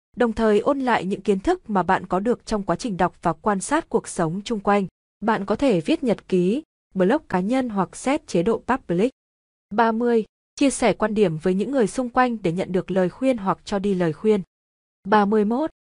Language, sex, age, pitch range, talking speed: Vietnamese, female, 20-39, 190-230 Hz, 215 wpm